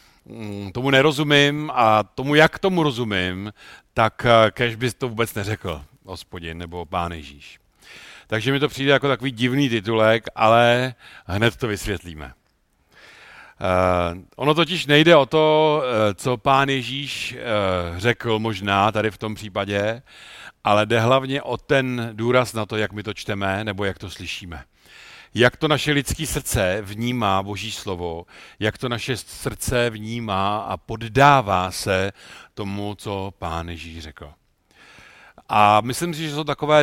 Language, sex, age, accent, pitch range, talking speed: Czech, male, 50-69, native, 100-130 Hz, 140 wpm